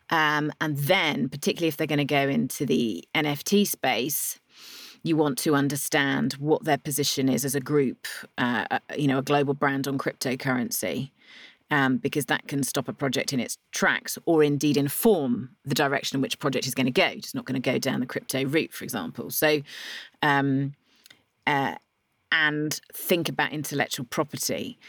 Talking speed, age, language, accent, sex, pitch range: 180 wpm, 30-49, English, British, female, 140-160 Hz